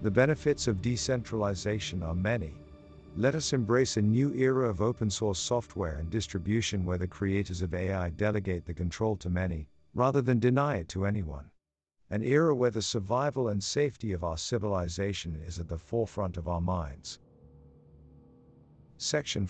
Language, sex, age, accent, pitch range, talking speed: English, male, 50-69, American, 85-115 Hz, 155 wpm